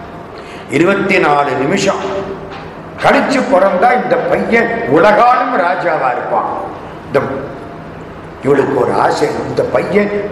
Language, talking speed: Tamil, 85 wpm